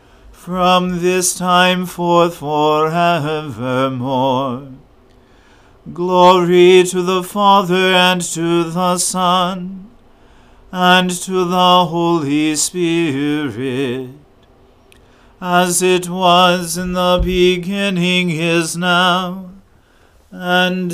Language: English